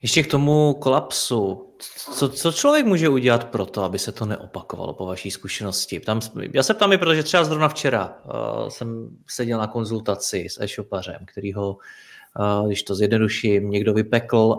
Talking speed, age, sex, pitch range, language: 175 wpm, 30-49, male, 105-130 Hz, Czech